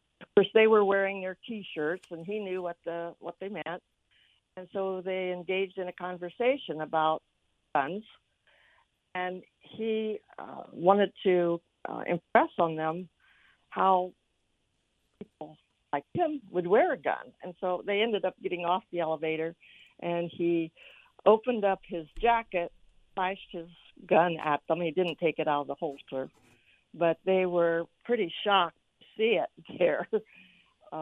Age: 60-79